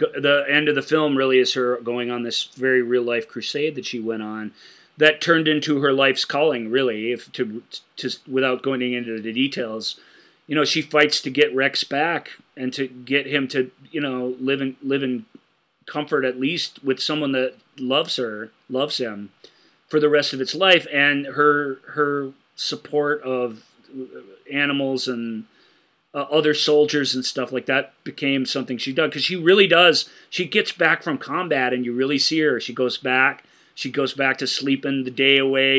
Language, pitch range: English, 125-145 Hz